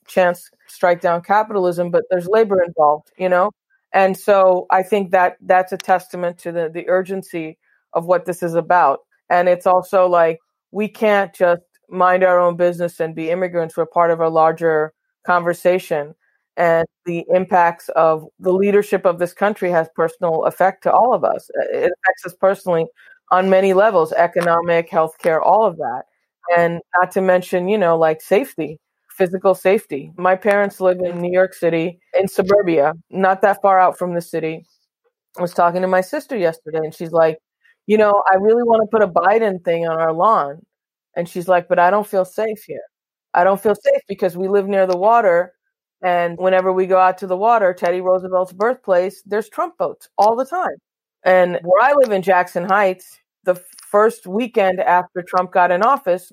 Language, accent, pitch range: English, American, 175-200 Hz